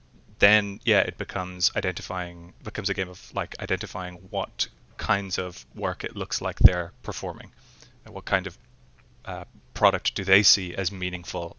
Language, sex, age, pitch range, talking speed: English, male, 20-39, 85-100 Hz, 160 wpm